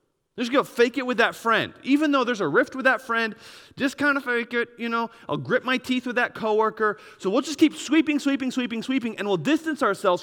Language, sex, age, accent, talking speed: English, male, 30-49, American, 240 wpm